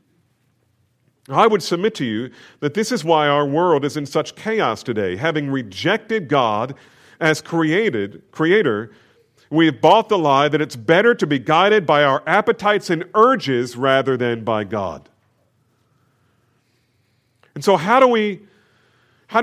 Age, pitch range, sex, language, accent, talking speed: 40-59, 120-185 Hz, male, English, American, 140 wpm